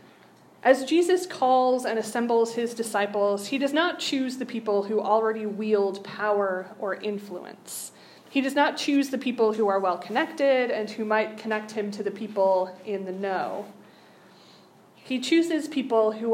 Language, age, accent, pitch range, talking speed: English, 20-39, American, 210-265 Hz, 160 wpm